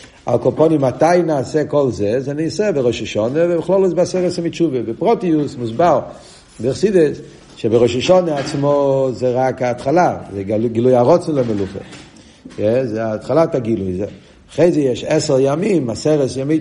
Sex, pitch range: male, 115-155 Hz